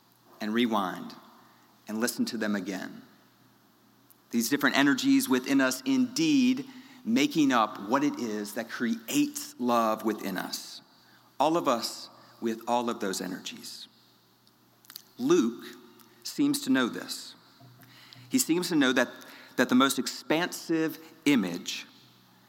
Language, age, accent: English, 40-59, American